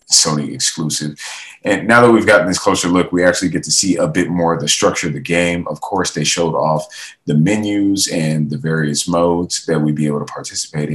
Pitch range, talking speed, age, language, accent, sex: 75-95 Hz, 225 wpm, 30-49, English, American, male